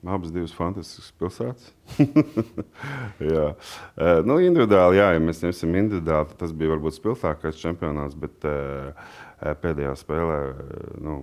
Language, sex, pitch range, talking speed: English, male, 75-85 Hz, 105 wpm